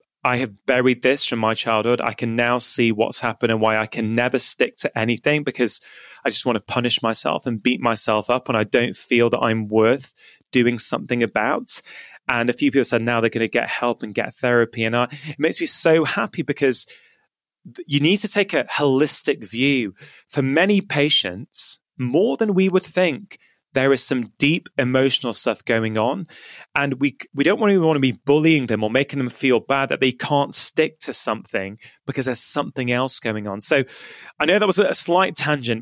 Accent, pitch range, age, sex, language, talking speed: British, 120-150 Hz, 20-39, male, English, 210 wpm